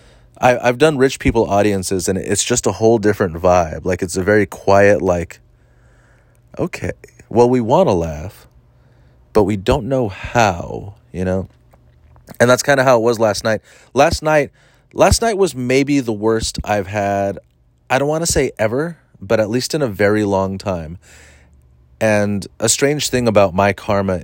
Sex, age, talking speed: male, 30-49, 175 wpm